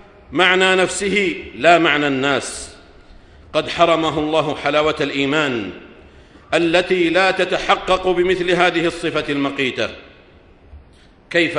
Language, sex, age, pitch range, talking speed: Arabic, male, 50-69, 140-185 Hz, 95 wpm